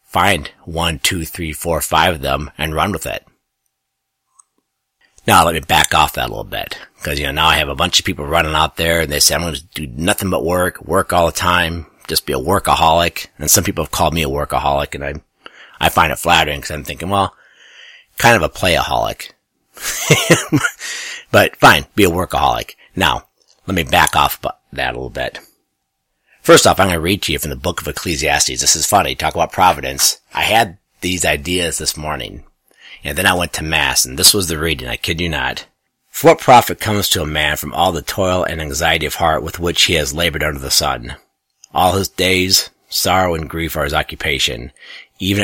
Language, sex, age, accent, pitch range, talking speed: English, male, 50-69, American, 75-90 Hz, 215 wpm